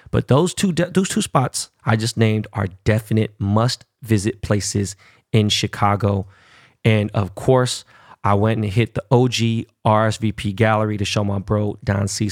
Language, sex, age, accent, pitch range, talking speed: English, male, 20-39, American, 105-120 Hz, 150 wpm